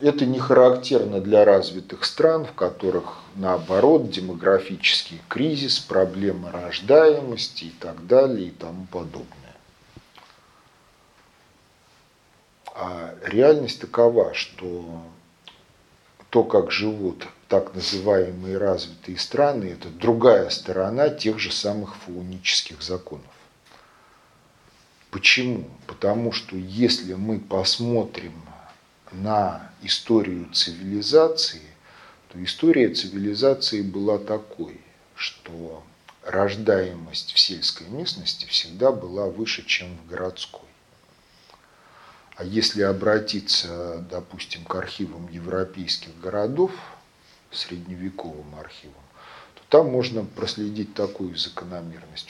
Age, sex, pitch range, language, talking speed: 50-69, male, 90-120 Hz, Russian, 90 wpm